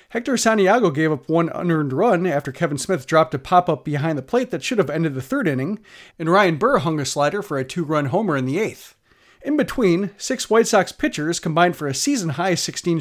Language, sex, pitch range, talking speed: English, male, 155-220 Hz, 215 wpm